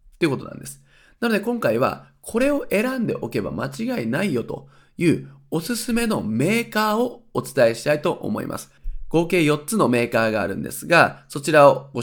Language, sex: Japanese, male